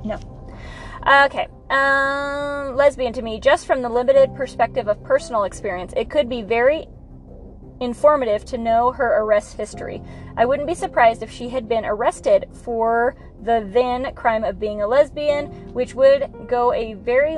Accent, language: American, English